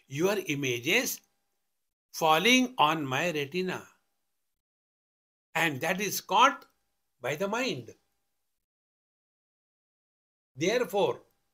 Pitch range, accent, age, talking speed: 140-200 Hz, Indian, 60-79, 75 wpm